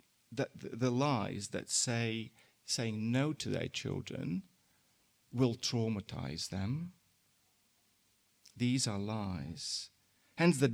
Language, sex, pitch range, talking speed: English, male, 110-150 Hz, 100 wpm